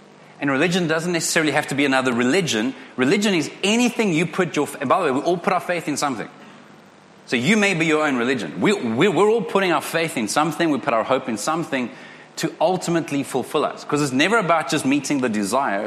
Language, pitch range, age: English, 135-170 Hz, 30-49